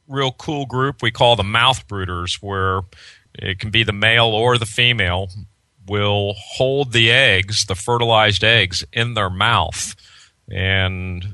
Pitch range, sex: 95-115 Hz, male